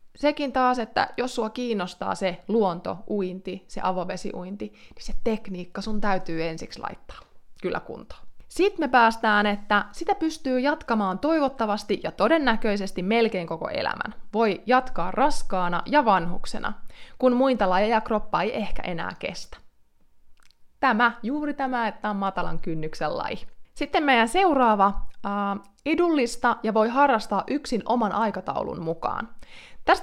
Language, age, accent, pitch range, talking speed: Finnish, 20-39, native, 195-255 Hz, 140 wpm